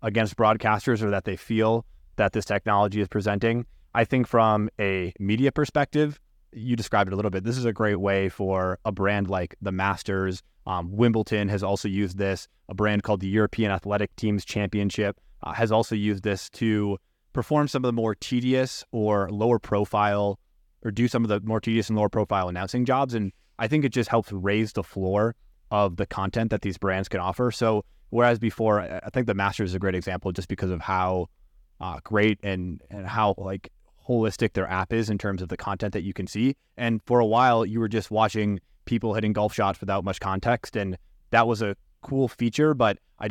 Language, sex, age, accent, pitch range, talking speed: English, male, 20-39, American, 95-115 Hz, 205 wpm